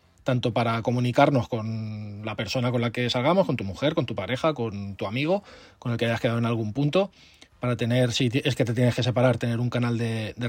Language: Spanish